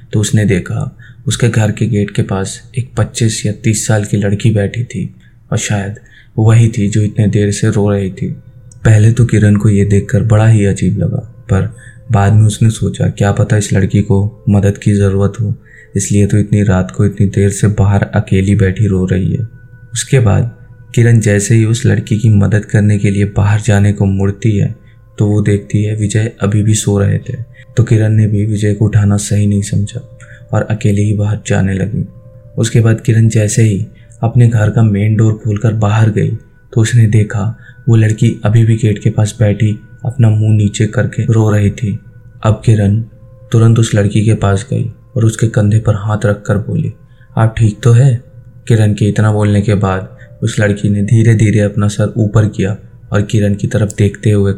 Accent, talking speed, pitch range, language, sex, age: native, 195 wpm, 105-115 Hz, Hindi, male, 20-39